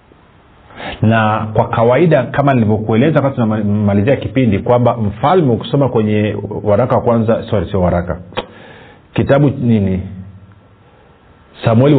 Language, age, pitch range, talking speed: Swahili, 40-59, 100-125 Hz, 105 wpm